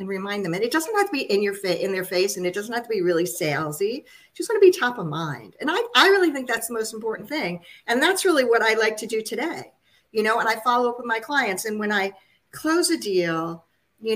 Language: English